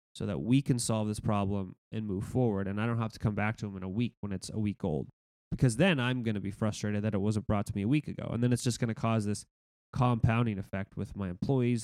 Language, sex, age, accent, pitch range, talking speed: English, male, 20-39, American, 100-125 Hz, 285 wpm